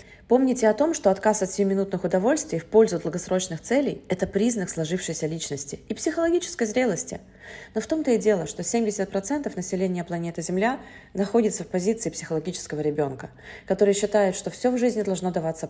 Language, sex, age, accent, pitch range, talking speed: Russian, female, 30-49, native, 165-220 Hz, 160 wpm